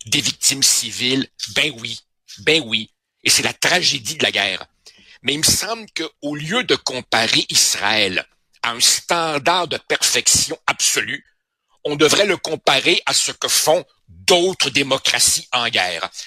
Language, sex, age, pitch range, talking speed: French, male, 60-79, 130-175 Hz, 150 wpm